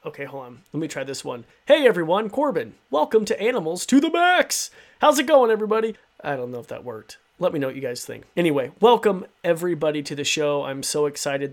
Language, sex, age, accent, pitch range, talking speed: English, male, 30-49, American, 145-185 Hz, 225 wpm